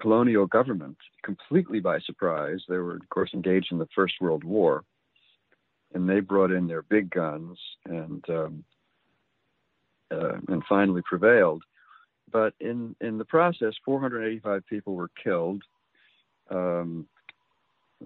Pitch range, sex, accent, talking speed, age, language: 90-125 Hz, male, American, 135 wpm, 60-79, English